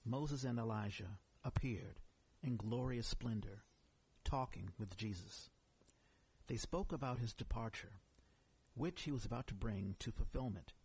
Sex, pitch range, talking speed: male, 100-125 Hz, 125 wpm